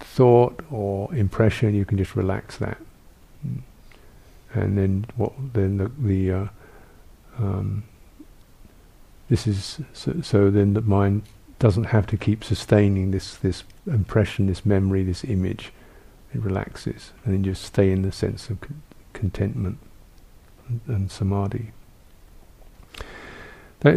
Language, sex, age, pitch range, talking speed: English, male, 50-69, 100-115 Hz, 130 wpm